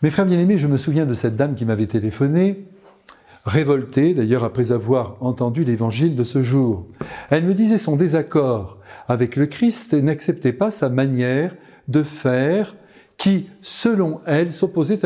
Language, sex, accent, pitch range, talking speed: French, male, French, 130-185 Hz, 160 wpm